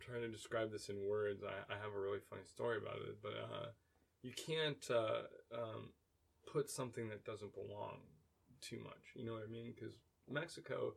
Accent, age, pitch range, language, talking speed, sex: American, 20-39, 100-115 Hz, English, 190 wpm, male